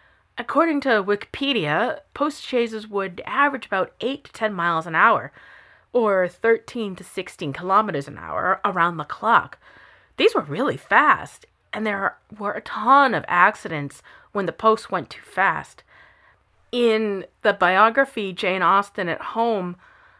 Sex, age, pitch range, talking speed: female, 30-49, 165-225 Hz, 145 wpm